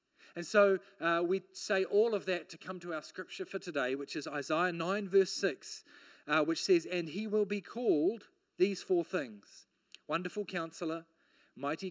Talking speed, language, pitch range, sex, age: 175 wpm, English, 150-195 Hz, male, 40-59